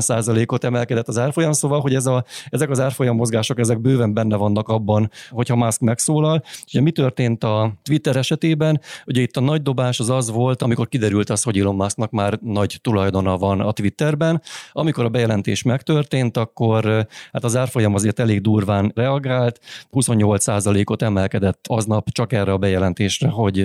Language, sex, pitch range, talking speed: Hungarian, male, 105-125 Hz, 170 wpm